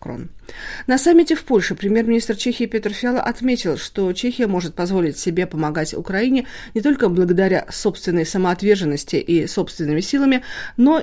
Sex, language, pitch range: female, Russian, 165-235 Hz